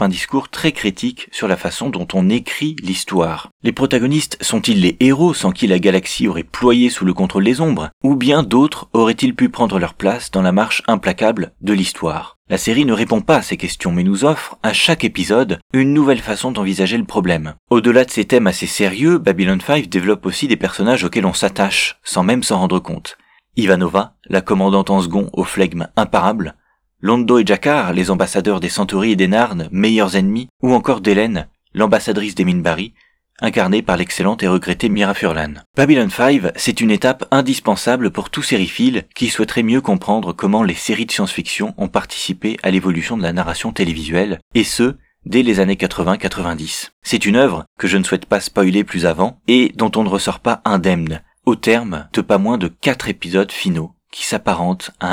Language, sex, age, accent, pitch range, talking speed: French, male, 30-49, French, 95-125 Hz, 190 wpm